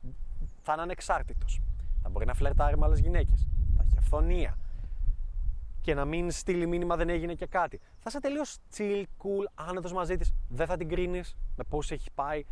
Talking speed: 180 wpm